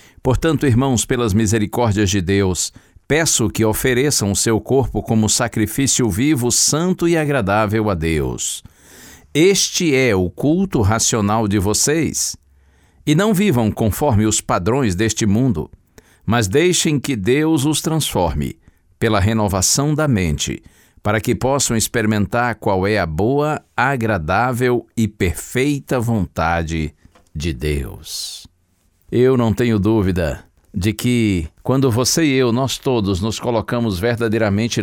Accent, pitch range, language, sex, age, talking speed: Brazilian, 95-125 Hz, Portuguese, male, 60-79, 125 wpm